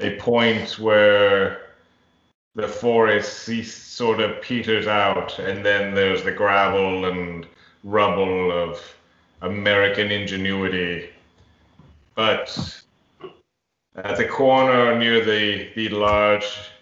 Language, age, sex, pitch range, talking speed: English, 30-49, male, 90-110 Hz, 95 wpm